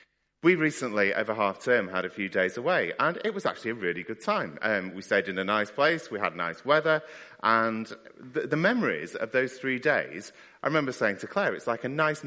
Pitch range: 100-140 Hz